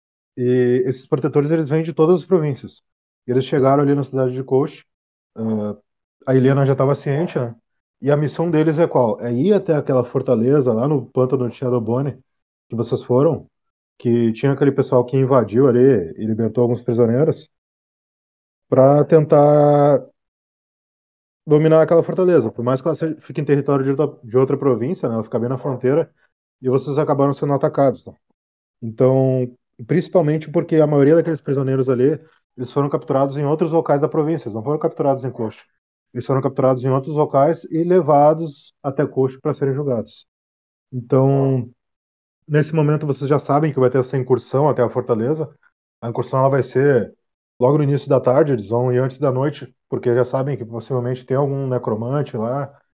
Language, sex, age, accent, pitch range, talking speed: Portuguese, male, 20-39, Brazilian, 125-145 Hz, 175 wpm